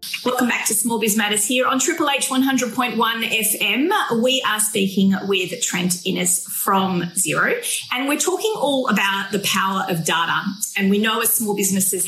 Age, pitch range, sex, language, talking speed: 30-49, 180-225 Hz, female, English, 175 wpm